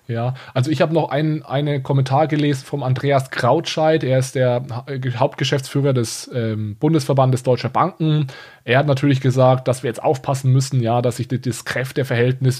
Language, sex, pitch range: German, male, 125-150 Hz